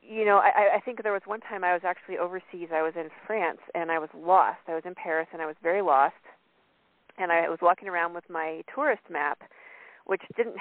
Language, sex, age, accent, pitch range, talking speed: English, female, 40-59, American, 170-210 Hz, 230 wpm